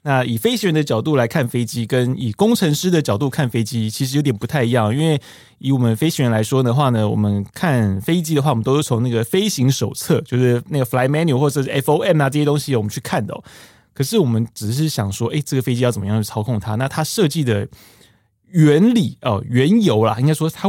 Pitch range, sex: 115-150 Hz, male